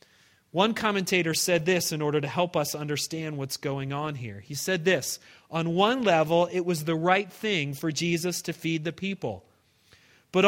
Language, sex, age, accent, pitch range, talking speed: English, male, 30-49, American, 145-200 Hz, 185 wpm